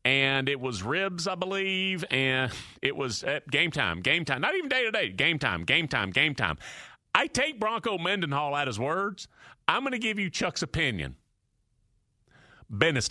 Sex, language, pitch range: male, English, 120-200 Hz